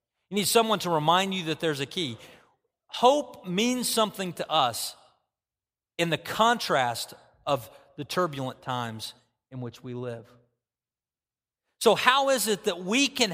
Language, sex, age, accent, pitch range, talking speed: English, male, 40-59, American, 130-180 Hz, 150 wpm